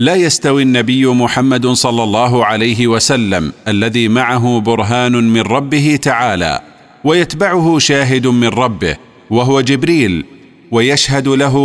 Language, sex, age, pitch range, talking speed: Arabic, male, 40-59, 120-145 Hz, 115 wpm